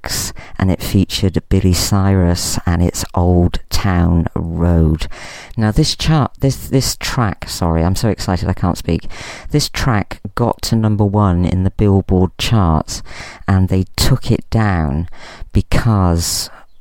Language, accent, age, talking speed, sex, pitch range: English, British, 40-59, 135 wpm, female, 85-100 Hz